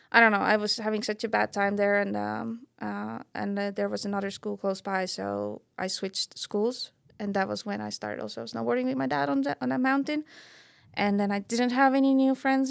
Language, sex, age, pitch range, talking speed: English, female, 20-39, 205-265 Hz, 235 wpm